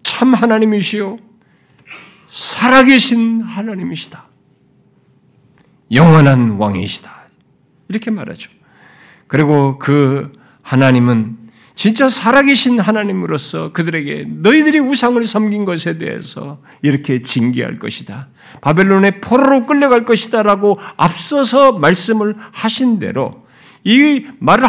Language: Korean